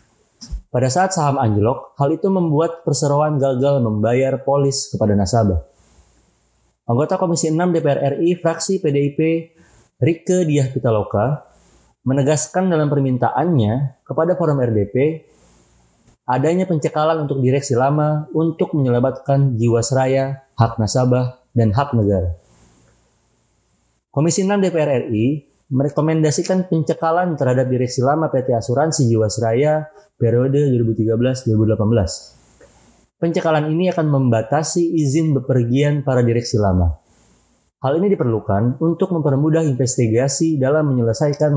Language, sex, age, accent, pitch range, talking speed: Indonesian, male, 30-49, native, 115-155 Hz, 105 wpm